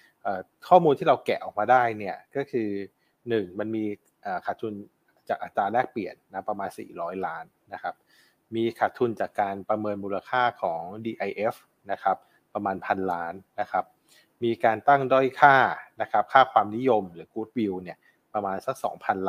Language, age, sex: Thai, 20-39, male